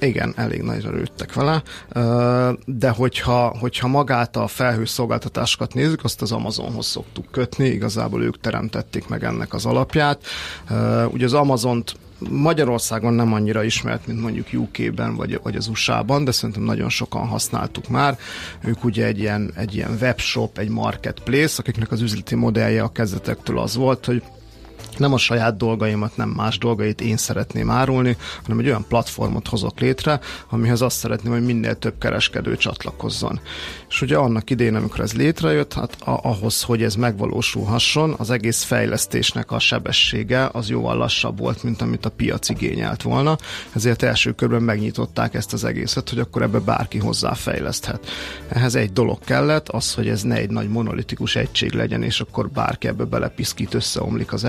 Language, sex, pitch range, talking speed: Hungarian, male, 110-125 Hz, 155 wpm